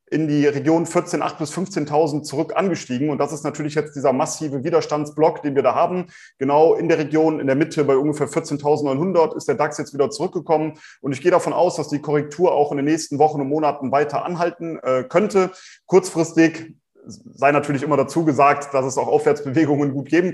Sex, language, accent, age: male, German, German, 30-49